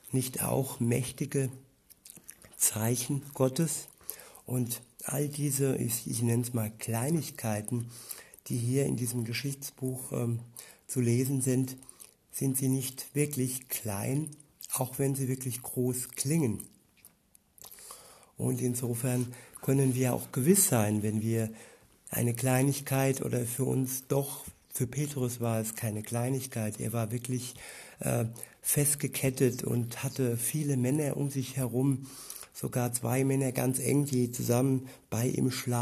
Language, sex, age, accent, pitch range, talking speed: German, male, 60-79, German, 120-140 Hz, 125 wpm